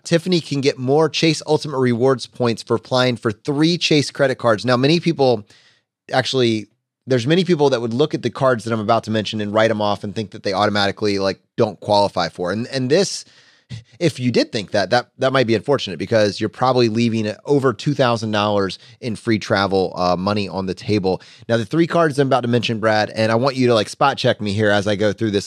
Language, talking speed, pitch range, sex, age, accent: English, 230 wpm, 110-140 Hz, male, 30-49, American